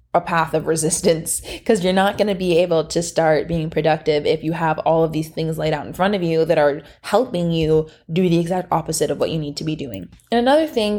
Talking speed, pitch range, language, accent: 250 wpm, 165-200 Hz, English, American